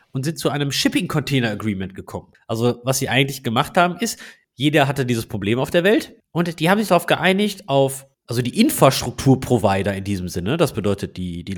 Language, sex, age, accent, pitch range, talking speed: German, male, 30-49, German, 105-155 Hz, 190 wpm